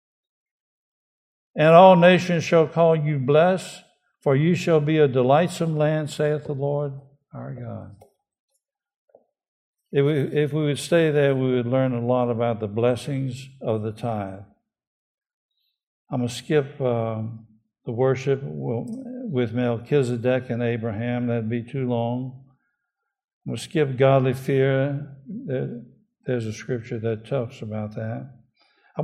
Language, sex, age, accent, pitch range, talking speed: English, male, 60-79, American, 125-185 Hz, 135 wpm